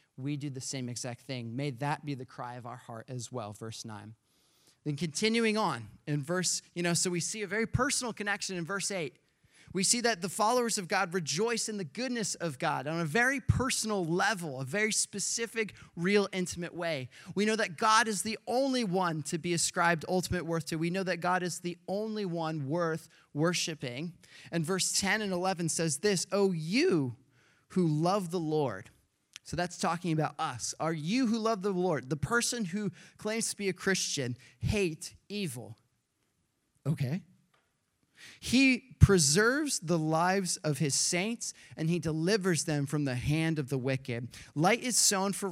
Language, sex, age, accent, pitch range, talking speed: English, male, 30-49, American, 145-195 Hz, 185 wpm